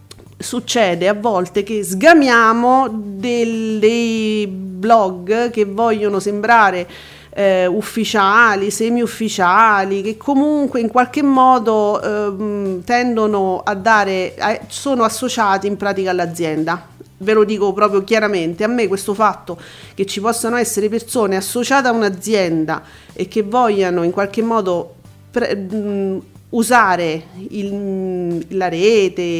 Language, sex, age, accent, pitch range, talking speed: Italian, female, 40-59, native, 190-230 Hz, 110 wpm